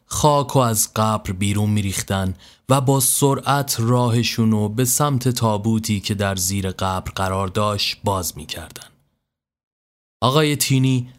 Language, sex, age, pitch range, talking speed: Persian, male, 30-49, 95-125 Hz, 125 wpm